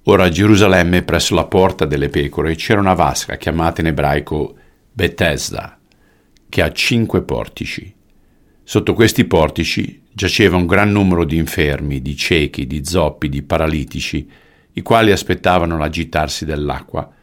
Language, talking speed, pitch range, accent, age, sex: Italian, 135 wpm, 75-90 Hz, native, 50-69, male